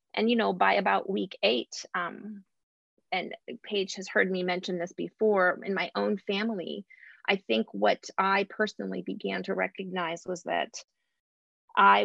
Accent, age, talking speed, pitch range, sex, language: American, 30-49, 155 wpm, 175-215 Hz, female, English